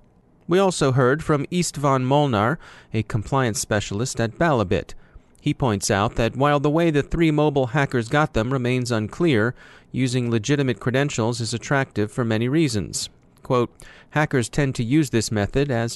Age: 30-49